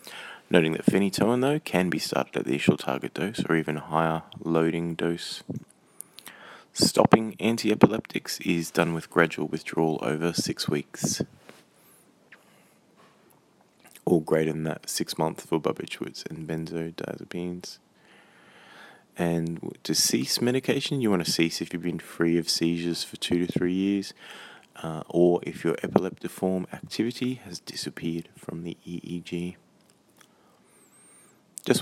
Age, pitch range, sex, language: 20-39, 80-95 Hz, male, English